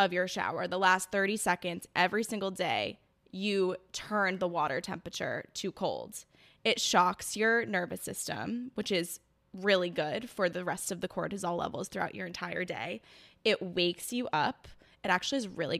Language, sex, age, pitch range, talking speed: English, female, 10-29, 180-215 Hz, 170 wpm